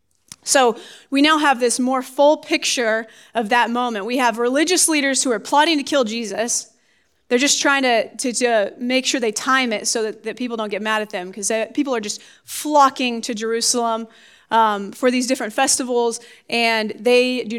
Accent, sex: American, female